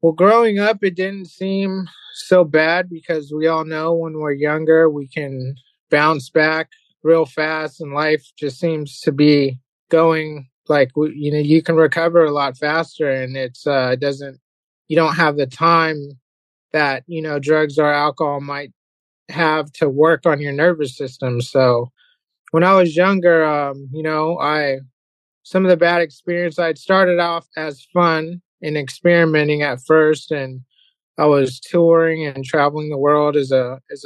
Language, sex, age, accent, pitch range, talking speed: English, male, 30-49, American, 140-165 Hz, 165 wpm